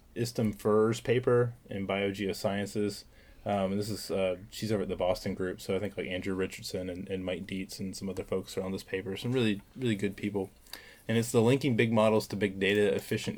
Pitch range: 95-110 Hz